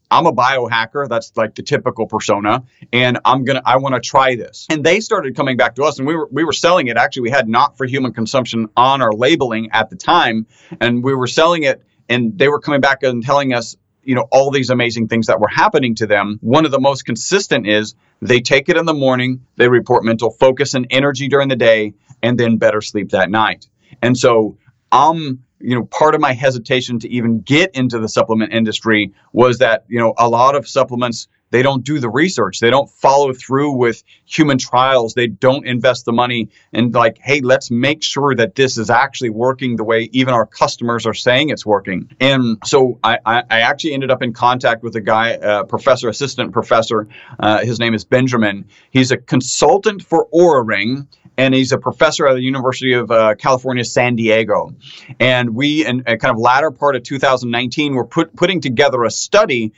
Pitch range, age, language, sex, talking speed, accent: 115-135 Hz, 40-59, English, male, 210 wpm, American